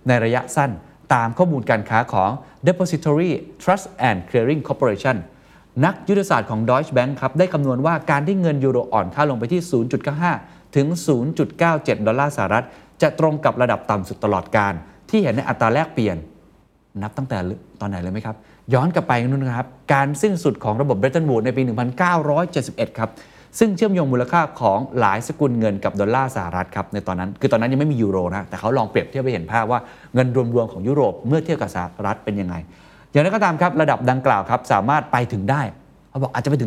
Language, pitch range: Thai, 110-155 Hz